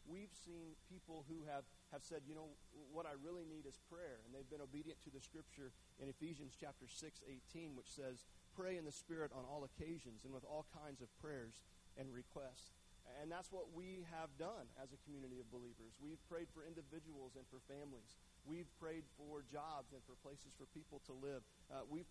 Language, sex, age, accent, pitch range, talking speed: English, male, 40-59, American, 130-160 Hz, 205 wpm